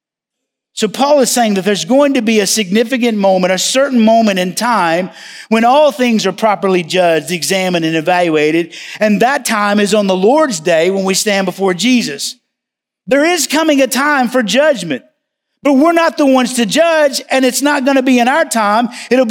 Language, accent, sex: English, American, male